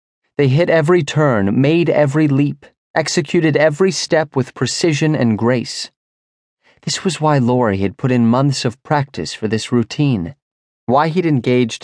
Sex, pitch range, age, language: male, 110-150 Hz, 30-49, English